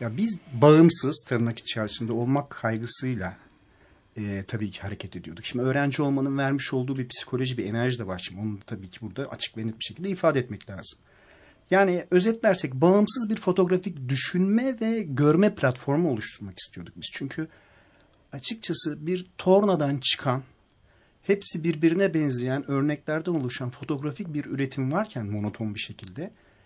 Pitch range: 115-185 Hz